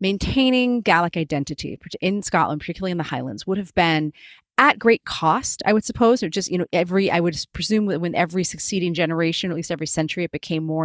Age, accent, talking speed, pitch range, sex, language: 30-49, American, 205 wpm, 165-205 Hz, female, English